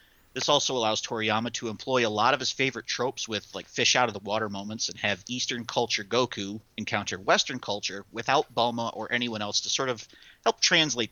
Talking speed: 185 wpm